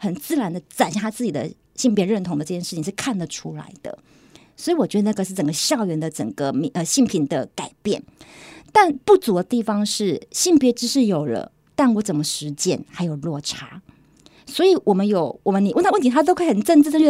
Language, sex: Chinese, female